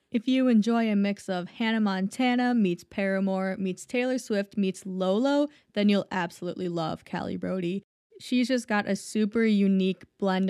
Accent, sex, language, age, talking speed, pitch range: American, female, English, 20-39, 160 wpm, 185-225 Hz